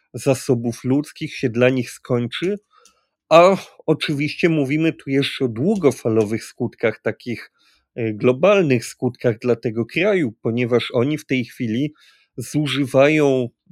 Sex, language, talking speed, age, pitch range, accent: male, Polish, 115 wpm, 30-49, 115-145 Hz, native